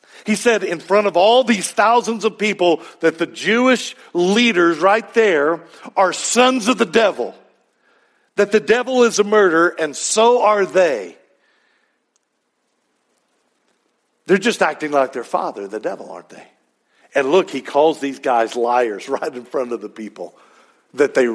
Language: English